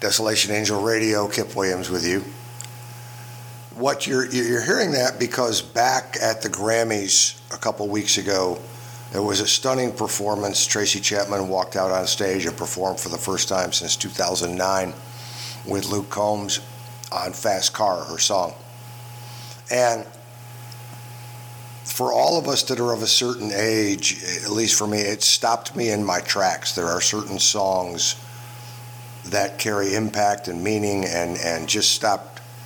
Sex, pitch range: male, 100-120 Hz